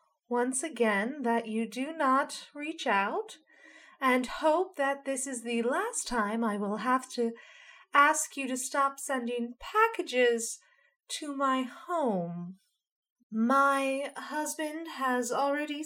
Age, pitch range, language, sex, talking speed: 30-49, 235-325 Hz, English, female, 125 wpm